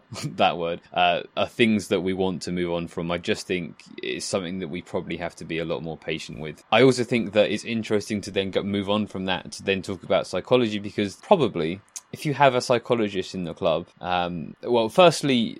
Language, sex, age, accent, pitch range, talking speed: English, male, 20-39, British, 90-110 Hz, 225 wpm